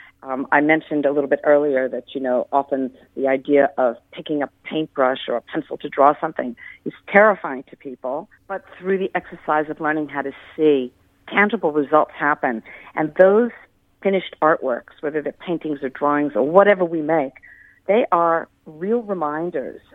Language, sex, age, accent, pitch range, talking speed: English, female, 50-69, American, 145-180 Hz, 170 wpm